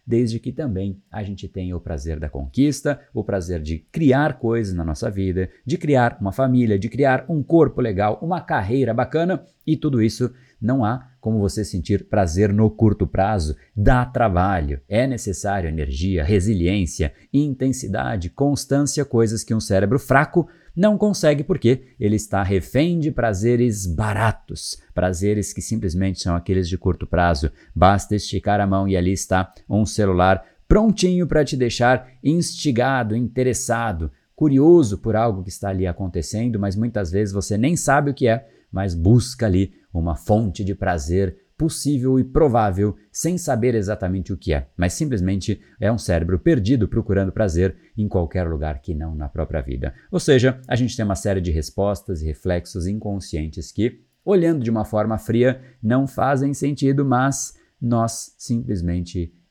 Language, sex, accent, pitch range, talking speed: Portuguese, male, Brazilian, 95-130 Hz, 160 wpm